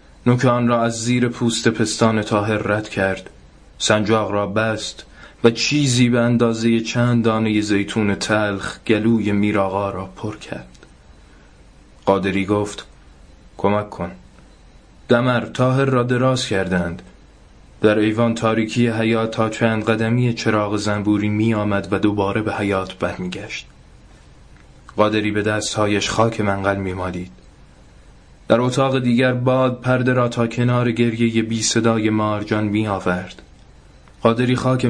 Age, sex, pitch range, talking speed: 20-39, male, 100-115 Hz, 130 wpm